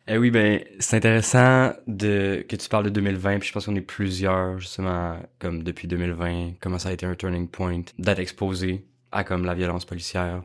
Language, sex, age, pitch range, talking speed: English, male, 20-39, 85-95 Hz, 200 wpm